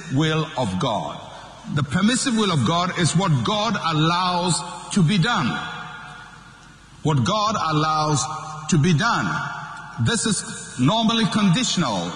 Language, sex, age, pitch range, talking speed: English, male, 60-79, 130-175 Hz, 125 wpm